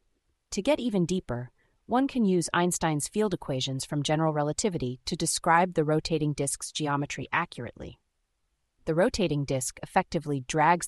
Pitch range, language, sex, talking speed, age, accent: 135-180 Hz, English, female, 140 wpm, 30-49, American